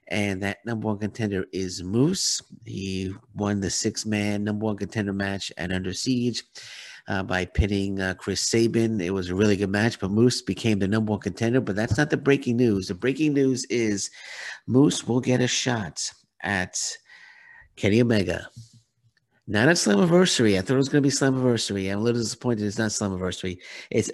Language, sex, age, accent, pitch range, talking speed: English, male, 50-69, American, 100-125 Hz, 180 wpm